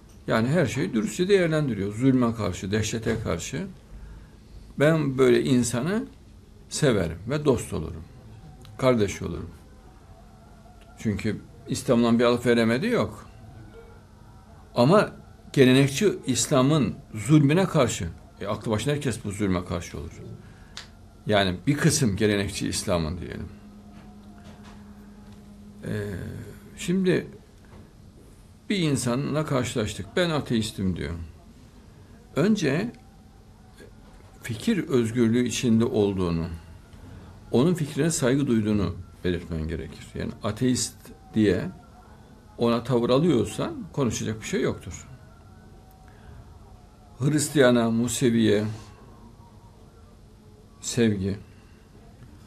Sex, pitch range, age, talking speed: male, 100-125 Hz, 60-79, 85 wpm